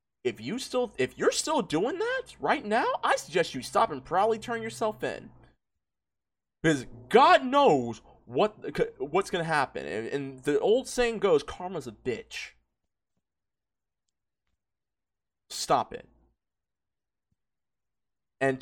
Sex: male